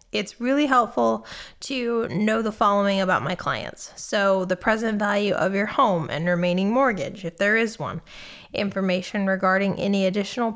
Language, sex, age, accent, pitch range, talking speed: English, female, 20-39, American, 185-235 Hz, 160 wpm